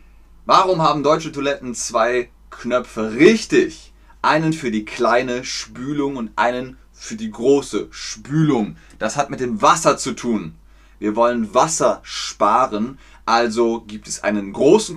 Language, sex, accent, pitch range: German, male, German, 105-145 Hz